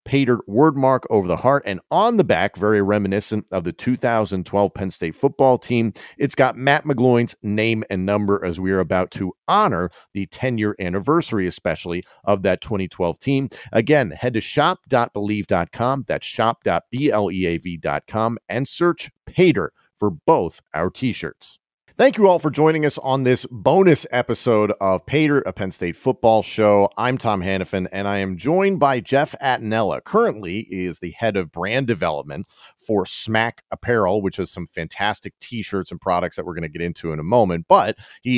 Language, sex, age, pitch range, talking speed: English, male, 40-59, 95-130 Hz, 165 wpm